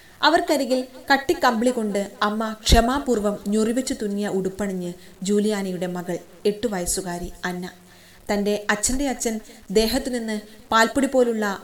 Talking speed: 130 wpm